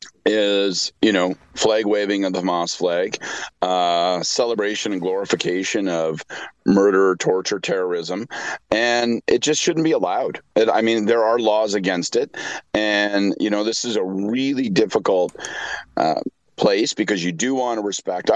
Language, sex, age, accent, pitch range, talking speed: English, male, 40-59, American, 95-120 Hz, 150 wpm